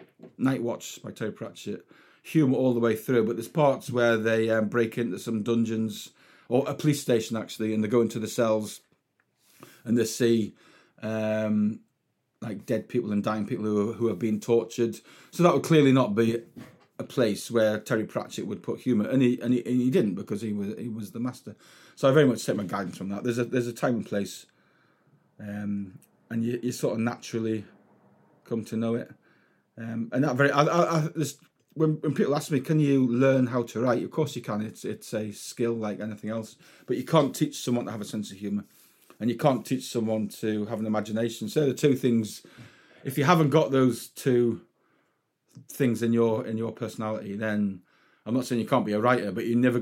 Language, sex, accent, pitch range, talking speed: English, male, British, 110-125 Hz, 215 wpm